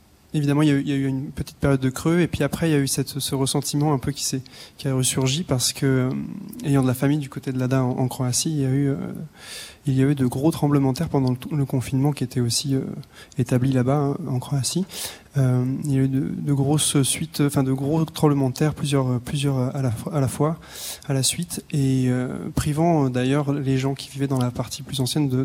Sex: male